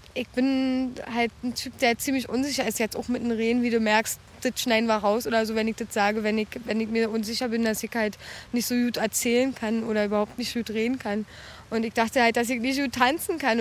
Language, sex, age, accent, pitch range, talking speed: German, female, 20-39, German, 235-275 Hz, 265 wpm